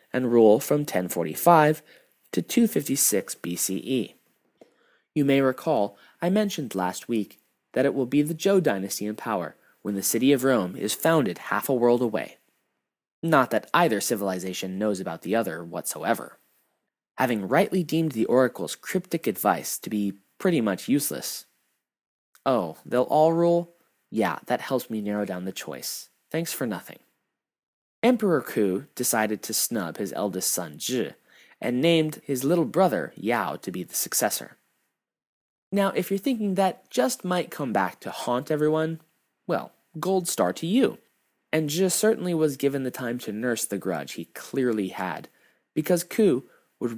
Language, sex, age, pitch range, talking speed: English, male, 20-39, 105-160 Hz, 155 wpm